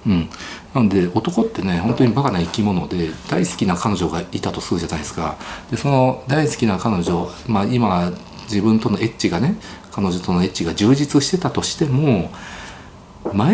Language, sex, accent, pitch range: Japanese, male, native, 95-145 Hz